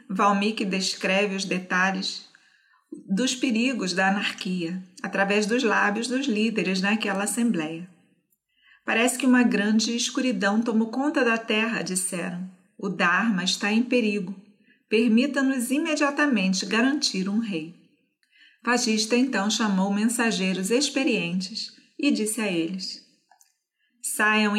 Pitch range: 195-250 Hz